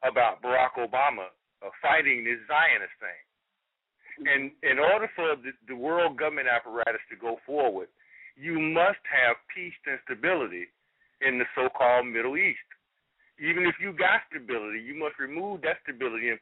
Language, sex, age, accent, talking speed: English, male, 50-69, American, 145 wpm